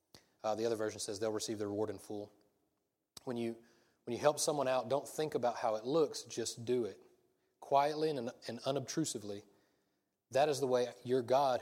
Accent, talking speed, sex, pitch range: American, 190 wpm, male, 110-140 Hz